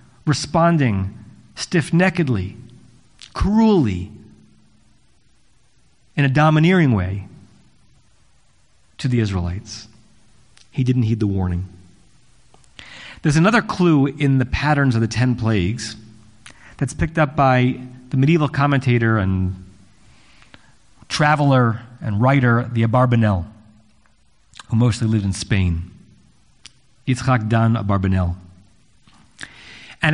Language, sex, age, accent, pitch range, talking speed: English, male, 40-59, American, 110-145 Hz, 95 wpm